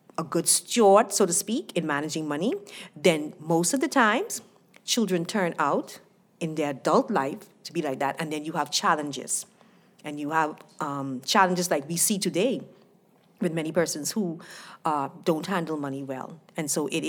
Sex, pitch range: female, 155-200 Hz